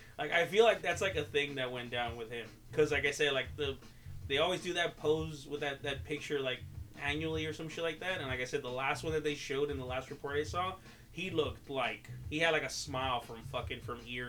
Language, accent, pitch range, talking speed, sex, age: English, American, 120-150 Hz, 265 wpm, male, 20-39